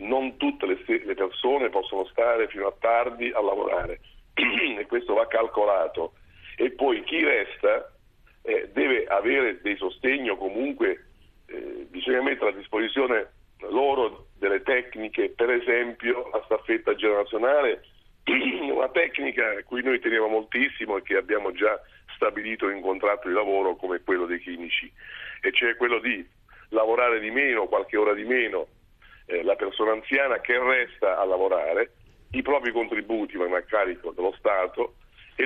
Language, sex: Italian, male